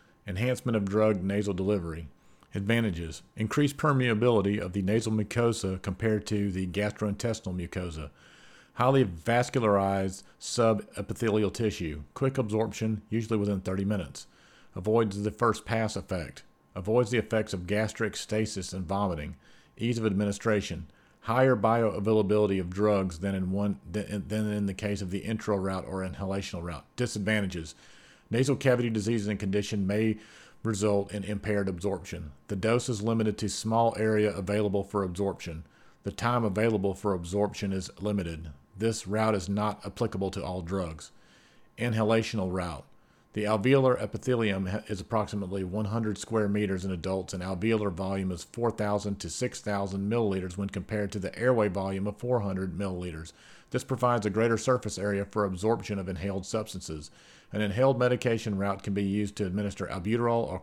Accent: American